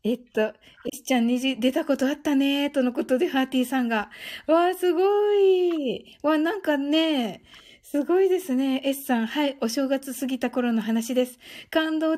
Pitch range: 235-330 Hz